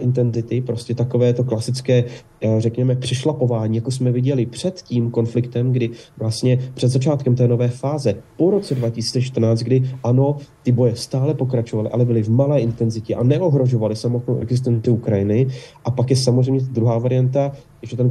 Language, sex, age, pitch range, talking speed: Slovak, male, 30-49, 115-130 Hz, 150 wpm